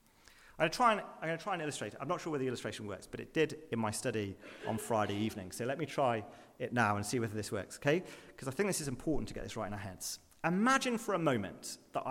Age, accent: 40-59, British